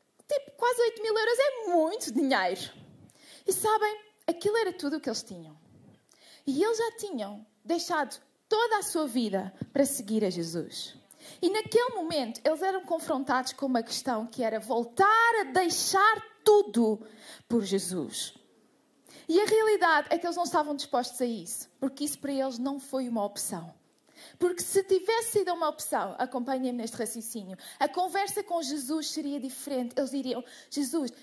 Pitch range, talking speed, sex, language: 235-320 Hz, 160 wpm, female, Portuguese